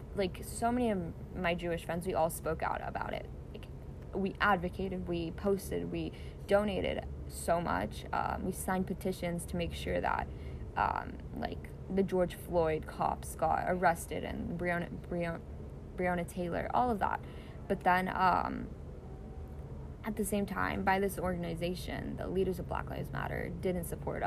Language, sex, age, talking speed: English, female, 10-29, 160 wpm